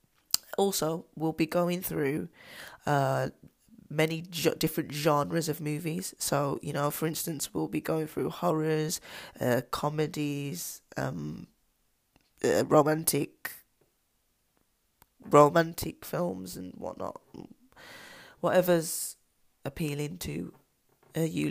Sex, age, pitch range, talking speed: female, 20-39, 145-165 Hz, 100 wpm